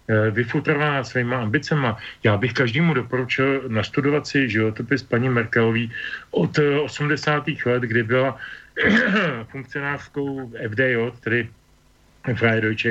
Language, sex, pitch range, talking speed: Slovak, male, 115-135 Hz, 100 wpm